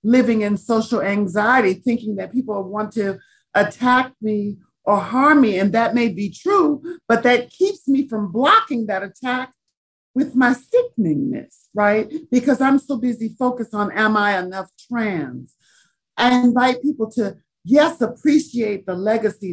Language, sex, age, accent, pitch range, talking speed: English, male, 50-69, American, 185-245 Hz, 150 wpm